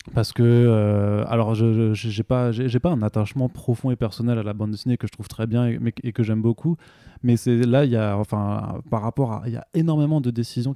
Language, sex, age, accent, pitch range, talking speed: French, male, 20-39, French, 110-130 Hz, 245 wpm